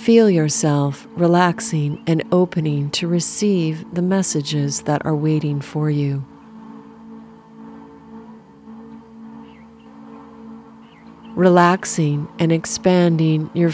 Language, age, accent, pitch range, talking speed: English, 40-59, American, 155-225 Hz, 80 wpm